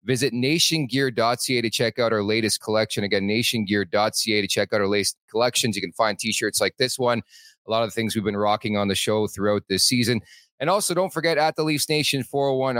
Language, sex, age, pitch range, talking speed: English, male, 40-59, 110-140 Hz, 215 wpm